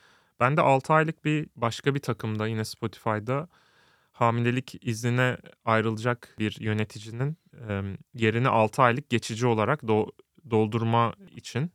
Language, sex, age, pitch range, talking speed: Turkish, male, 30-49, 110-135 Hz, 110 wpm